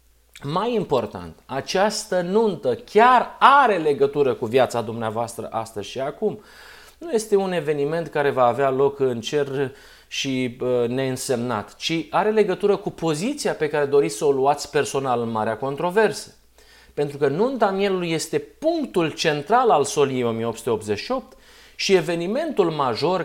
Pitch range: 125-180 Hz